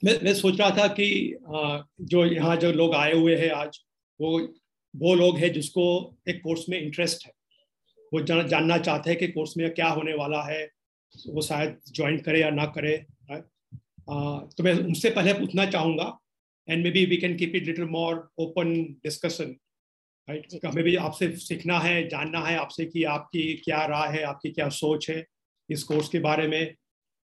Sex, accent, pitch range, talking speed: male, native, 150-175 Hz, 180 wpm